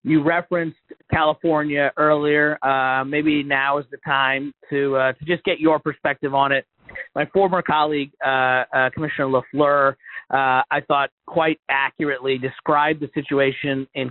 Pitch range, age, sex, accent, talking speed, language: 130-150 Hz, 40-59, male, American, 150 wpm, English